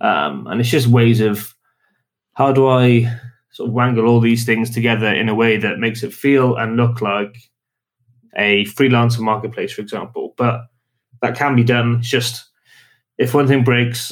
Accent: British